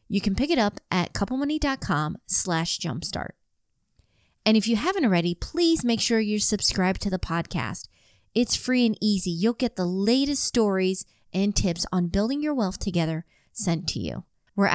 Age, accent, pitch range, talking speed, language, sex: 30-49, American, 175-235 Hz, 170 wpm, English, female